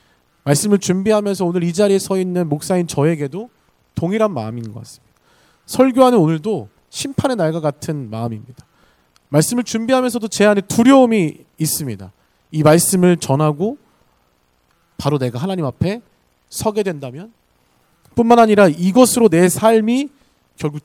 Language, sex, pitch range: Korean, male, 140-205 Hz